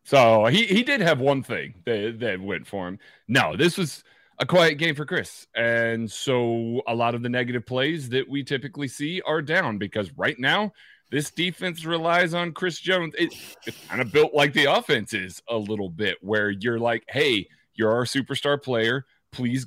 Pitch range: 105-140 Hz